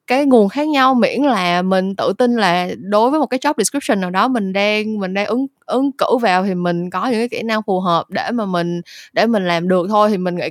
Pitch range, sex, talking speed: 180-240 Hz, female, 265 wpm